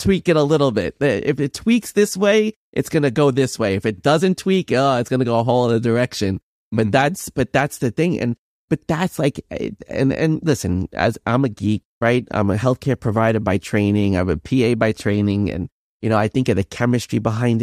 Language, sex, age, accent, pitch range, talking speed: English, male, 30-49, American, 110-145 Hz, 230 wpm